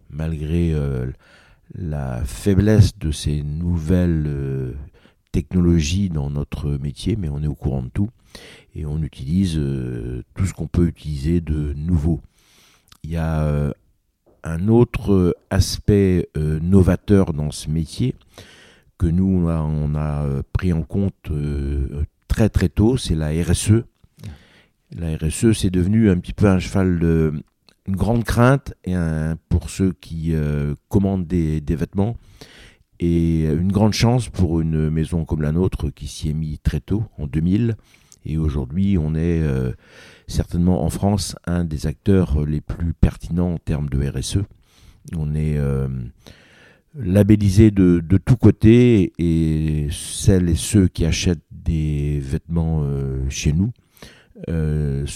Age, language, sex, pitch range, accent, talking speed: 60-79, French, male, 75-95 Hz, French, 145 wpm